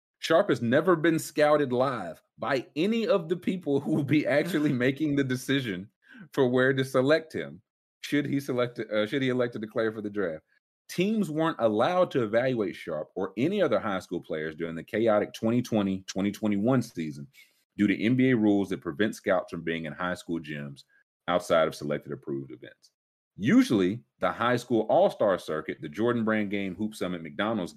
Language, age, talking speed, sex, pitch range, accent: English, 30-49, 180 wpm, male, 90-135 Hz, American